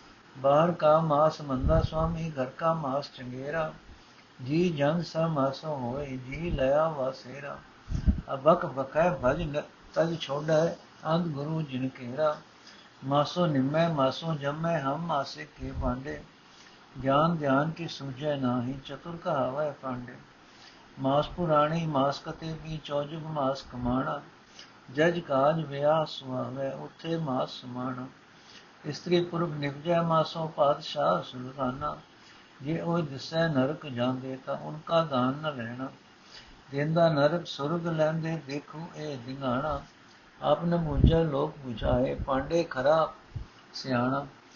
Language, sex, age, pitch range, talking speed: Punjabi, male, 60-79, 135-160 Hz, 120 wpm